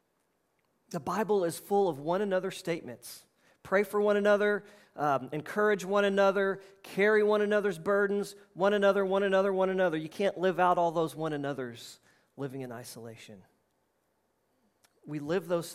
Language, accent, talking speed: English, American, 150 wpm